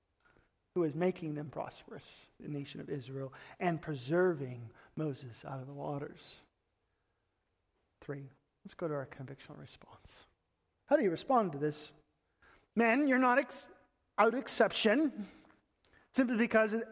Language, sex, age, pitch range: English, male, 40-59, 175-255 Hz